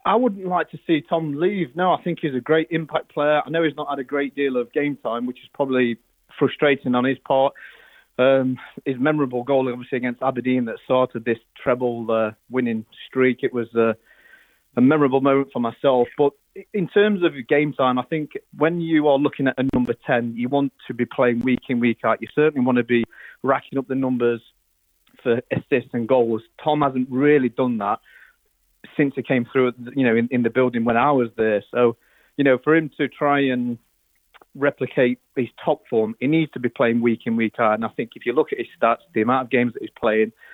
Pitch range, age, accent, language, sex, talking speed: 120-145 Hz, 30-49, British, English, male, 220 wpm